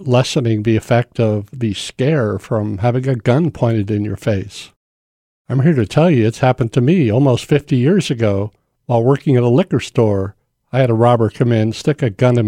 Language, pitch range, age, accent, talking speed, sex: English, 110-135 Hz, 60-79, American, 205 wpm, male